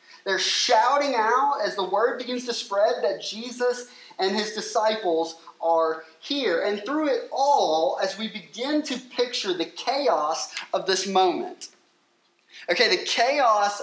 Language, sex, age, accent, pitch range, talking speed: English, male, 30-49, American, 190-265 Hz, 145 wpm